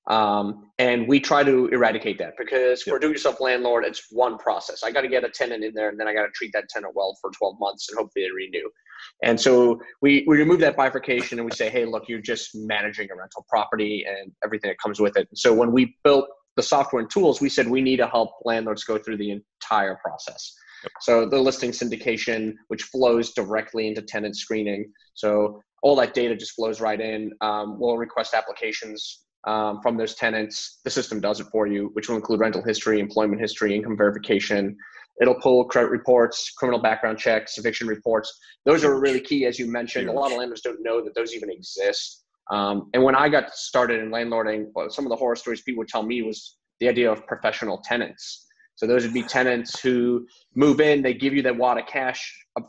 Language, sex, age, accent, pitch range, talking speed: English, male, 20-39, American, 110-130 Hz, 215 wpm